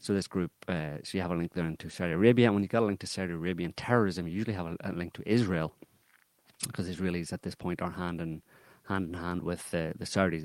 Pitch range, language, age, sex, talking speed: 80-95 Hz, English, 30-49, male, 265 wpm